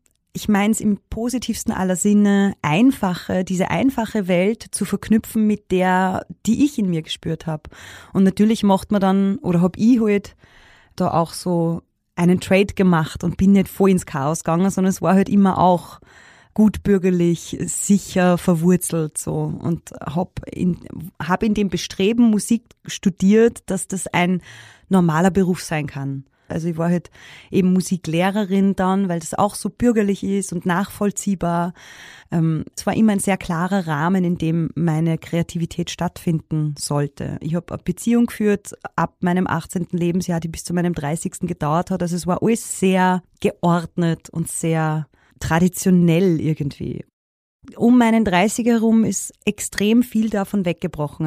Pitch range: 170-200 Hz